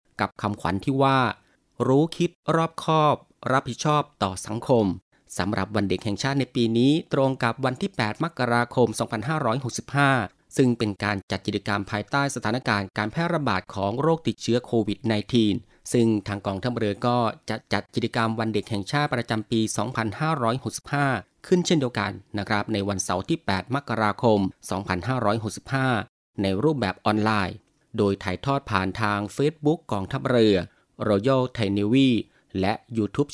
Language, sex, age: Thai, male, 30-49